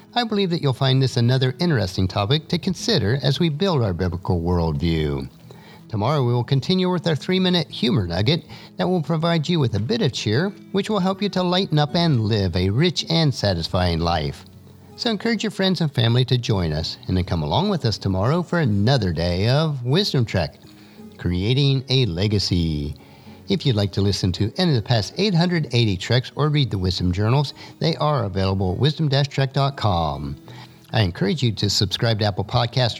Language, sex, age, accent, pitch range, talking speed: English, male, 50-69, American, 95-160 Hz, 190 wpm